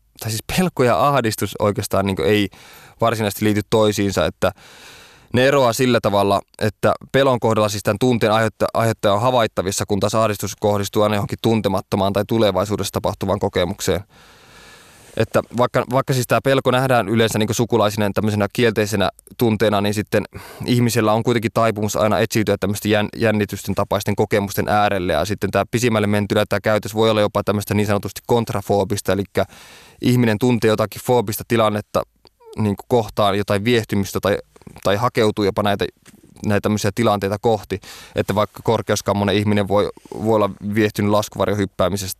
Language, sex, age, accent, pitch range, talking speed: Finnish, male, 20-39, native, 100-115 Hz, 145 wpm